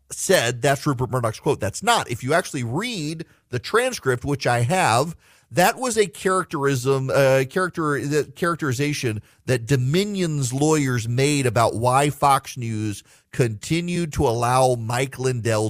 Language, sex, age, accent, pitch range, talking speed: English, male, 40-59, American, 105-145 Hz, 140 wpm